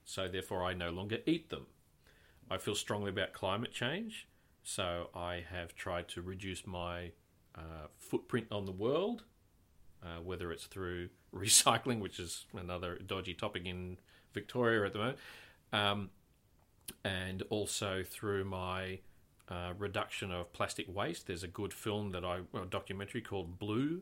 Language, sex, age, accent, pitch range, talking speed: English, male, 40-59, Australian, 90-115 Hz, 150 wpm